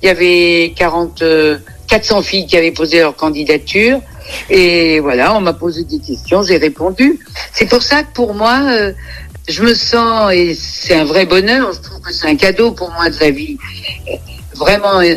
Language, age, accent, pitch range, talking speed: French, 60-79, French, 155-210 Hz, 180 wpm